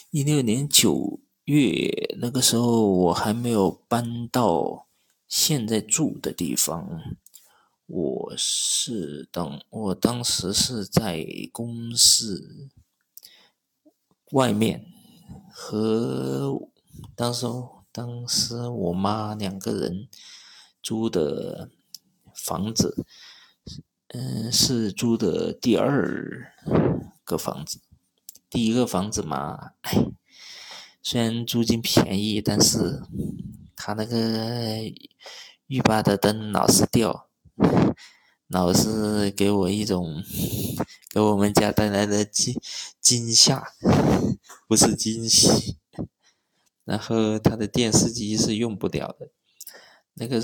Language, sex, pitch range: Chinese, male, 105-120 Hz